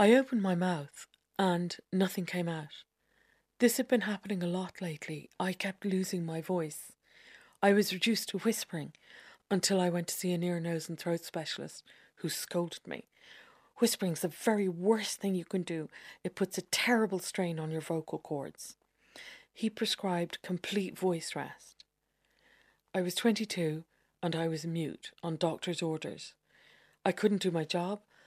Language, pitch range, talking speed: English, 165-200 Hz, 160 wpm